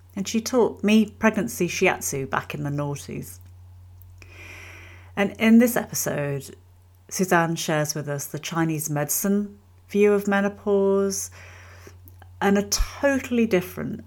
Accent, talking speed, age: British, 120 wpm, 40-59